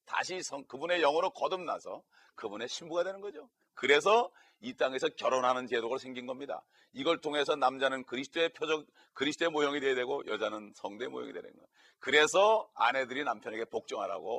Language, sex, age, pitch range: Korean, male, 40-59, 135-190 Hz